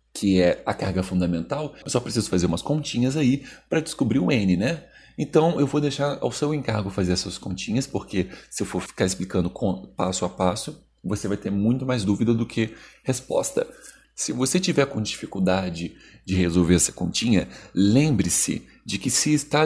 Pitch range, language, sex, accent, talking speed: 90-135 Hz, Portuguese, male, Brazilian, 180 wpm